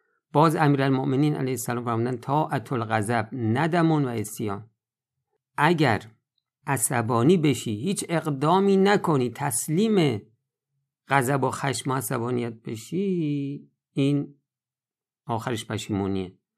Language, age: Persian, 50-69